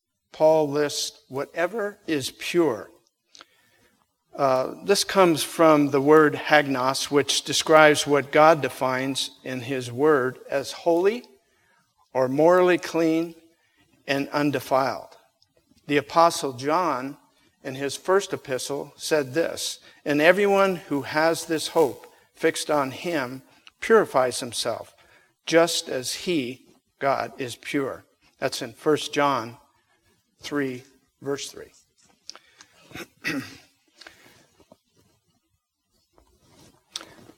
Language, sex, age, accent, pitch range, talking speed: English, male, 50-69, American, 135-165 Hz, 95 wpm